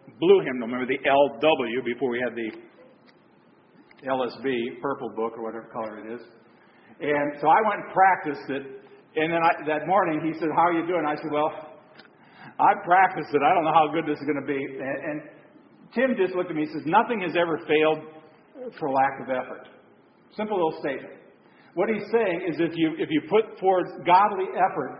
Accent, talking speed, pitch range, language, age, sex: American, 200 wpm, 140-185 Hz, English, 50-69, male